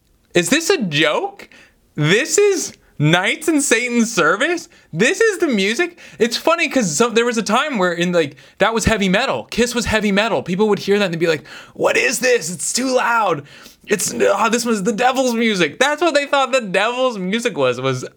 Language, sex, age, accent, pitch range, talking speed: English, male, 20-39, American, 135-220 Hz, 210 wpm